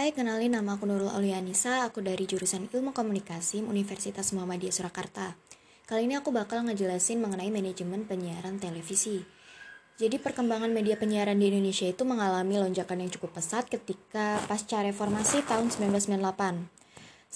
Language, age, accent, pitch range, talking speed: Indonesian, 20-39, native, 195-230 Hz, 145 wpm